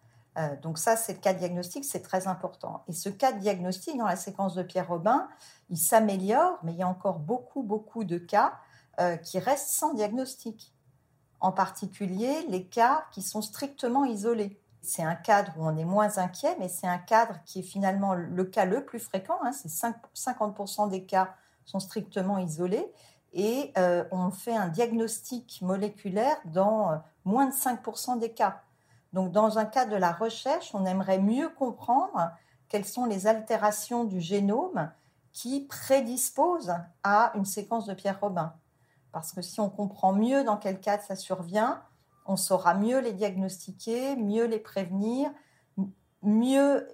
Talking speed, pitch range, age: 170 wpm, 185-230 Hz, 50-69